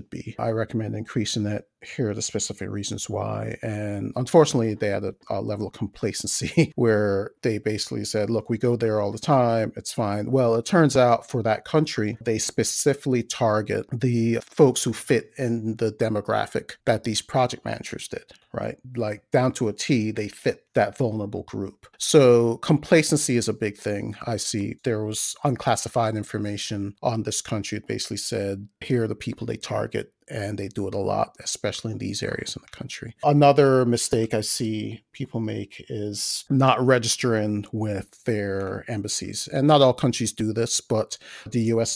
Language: English